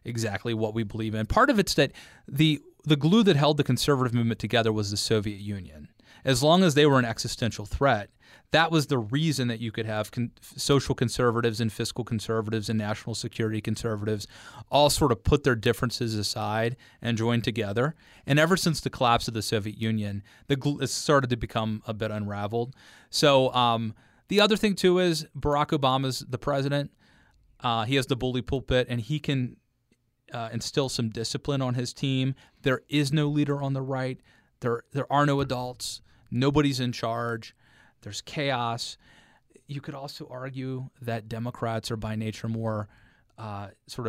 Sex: male